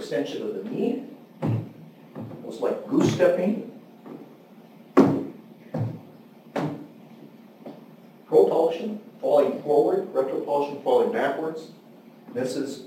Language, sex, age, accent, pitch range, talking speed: English, male, 40-59, American, 145-235 Hz, 75 wpm